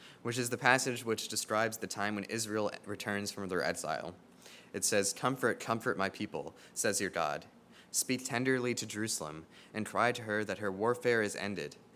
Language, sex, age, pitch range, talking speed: English, male, 20-39, 105-130 Hz, 180 wpm